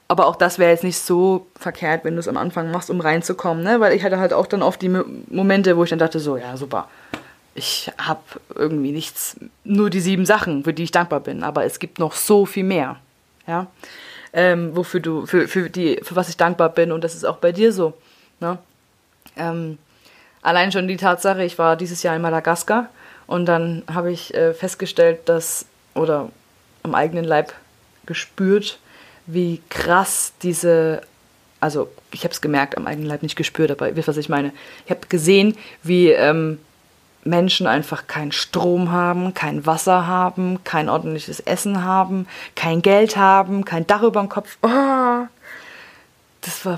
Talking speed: 180 wpm